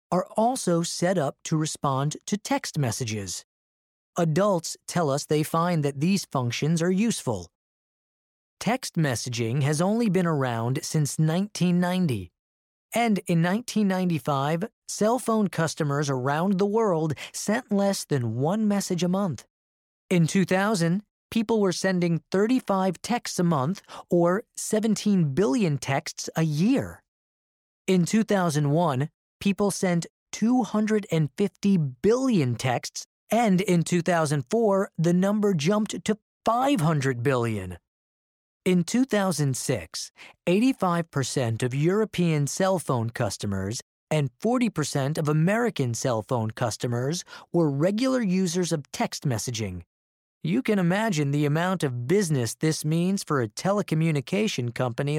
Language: English